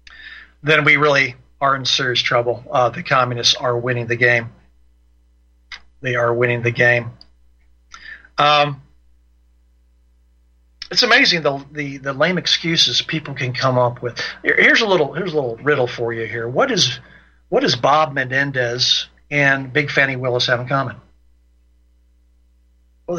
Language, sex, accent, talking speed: English, male, American, 145 wpm